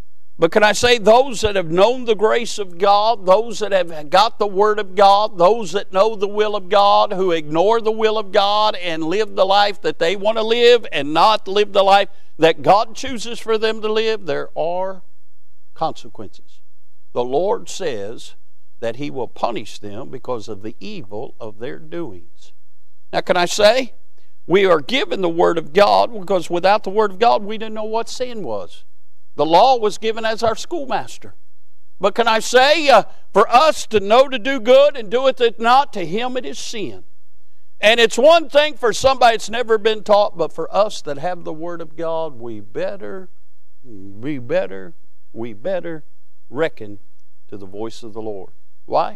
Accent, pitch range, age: American, 140-220 Hz, 50-69